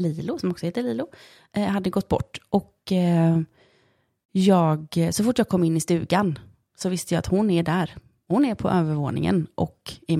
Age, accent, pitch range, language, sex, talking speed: 30-49, native, 160-210 Hz, Swedish, female, 175 wpm